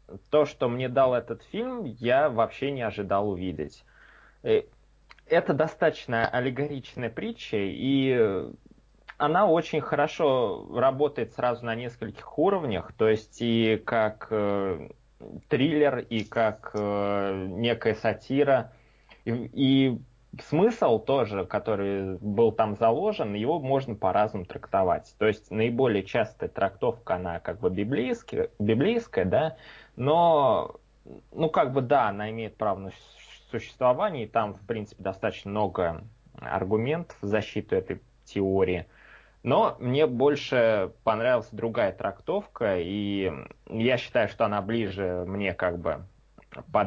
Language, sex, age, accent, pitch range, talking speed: Russian, male, 20-39, native, 105-135 Hz, 120 wpm